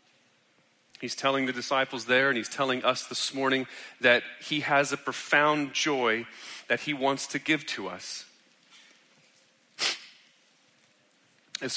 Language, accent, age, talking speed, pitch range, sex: English, American, 30-49, 125 wpm, 135-165 Hz, male